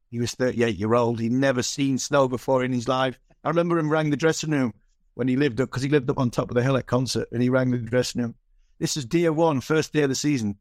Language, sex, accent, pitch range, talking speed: English, male, British, 120-145 Hz, 270 wpm